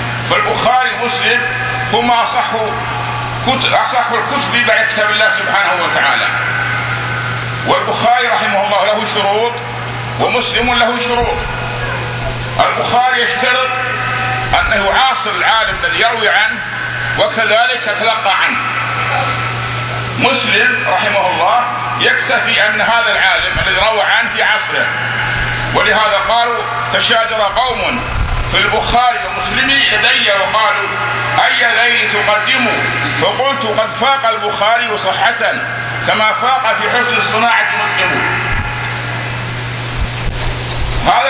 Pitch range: 175-245 Hz